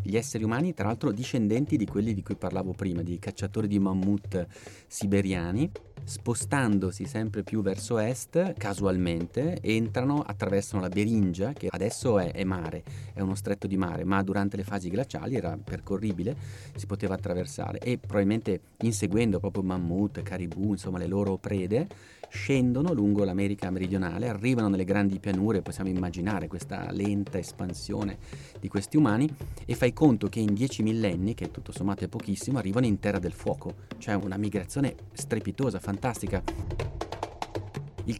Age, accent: 30-49, native